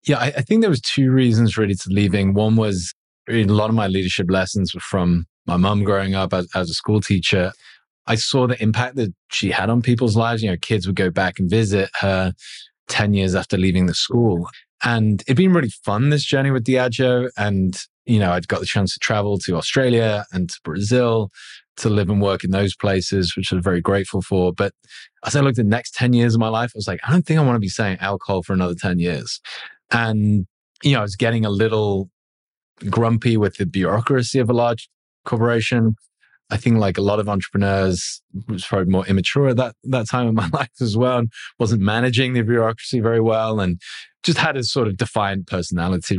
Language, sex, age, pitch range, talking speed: English, male, 20-39, 95-120 Hz, 220 wpm